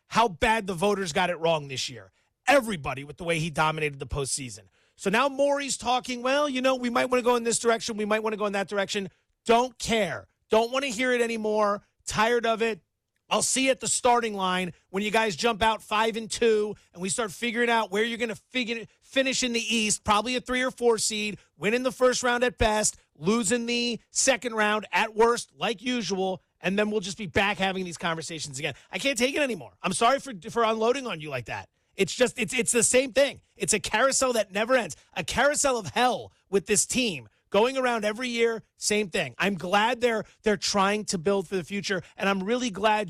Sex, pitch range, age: male, 185-235 Hz, 30-49